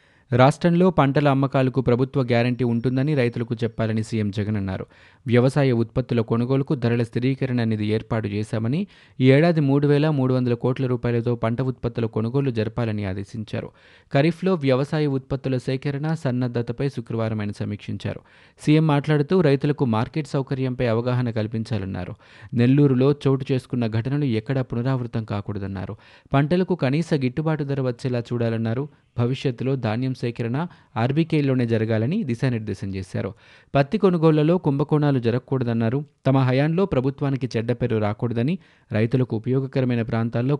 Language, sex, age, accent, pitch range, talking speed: Telugu, male, 20-39, native, 115-140 Hz, 110 wpm